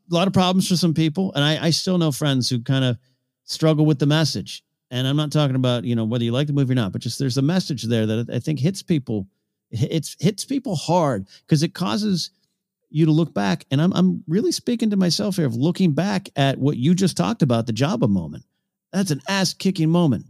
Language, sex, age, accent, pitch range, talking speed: English, male, 50-69, American, 130-175 Hz, 240 wpm